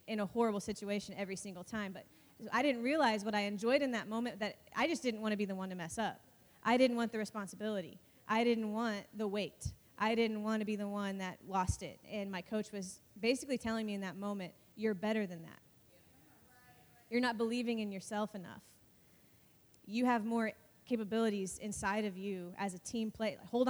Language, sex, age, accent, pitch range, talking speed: English, female, 20-39, American, 200-230 Hz, 205 wpm